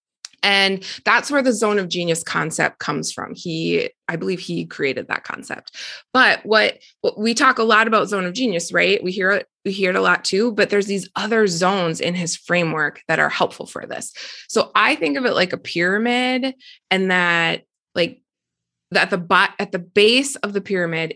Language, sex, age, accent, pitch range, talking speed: English, female, 20-39, American, 180-250 Hz, 200 wpm